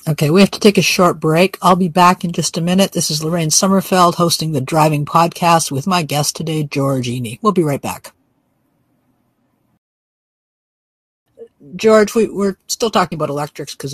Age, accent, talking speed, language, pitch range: 50-69, American, 175 wpm, English, 145-170 Hz